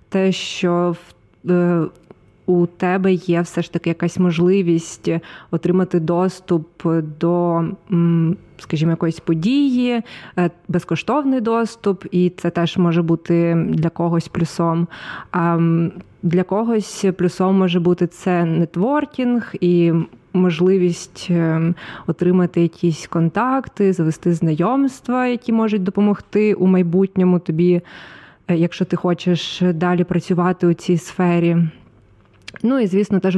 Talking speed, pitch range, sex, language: 105 wpm, 170-190 Hz, female, Ukrainian